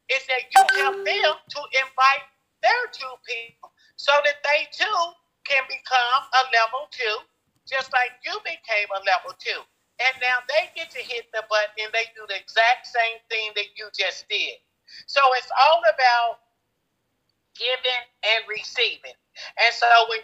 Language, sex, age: Swahili, male, 50-69